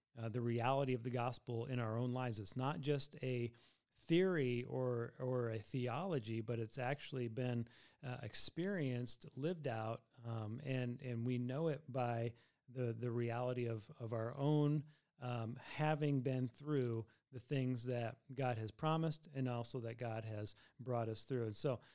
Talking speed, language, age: 165 wpm, English, 40-59